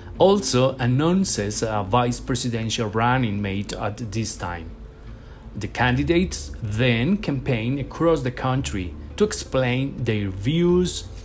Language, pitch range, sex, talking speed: English, 110-145 Hz, male, 110 wpm